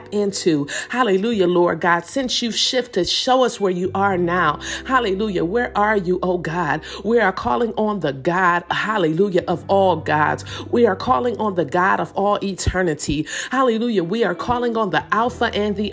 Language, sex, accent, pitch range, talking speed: English, female, American, 180-235 Hz, 175 wpm